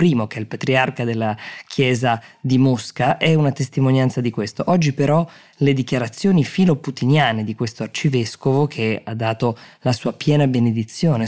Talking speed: 150 wpm